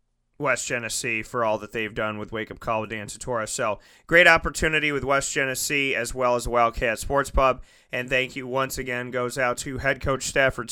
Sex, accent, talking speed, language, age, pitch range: male, American, 205 wpm, English, 30-49, 125-140 Hz